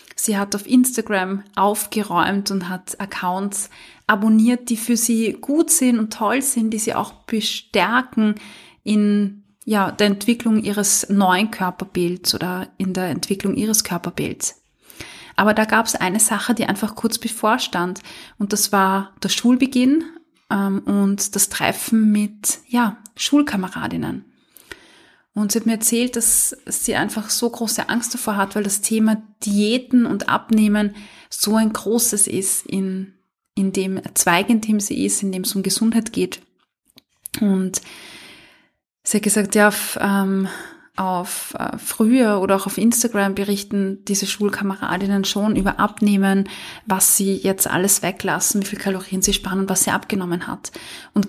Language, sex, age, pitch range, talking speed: German, female, 20-39, 195-225 Hz, 150 wpm